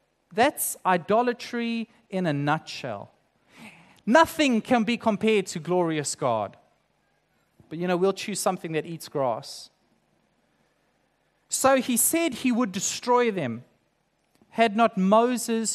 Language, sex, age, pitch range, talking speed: English, male, 30-49, 160-235 Hz, 120 wpm